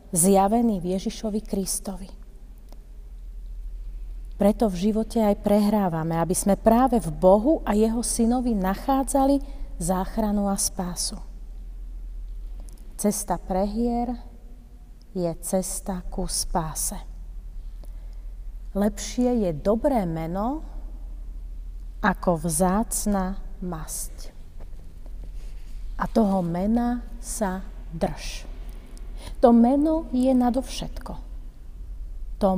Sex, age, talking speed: female, 30-49, 80 wpm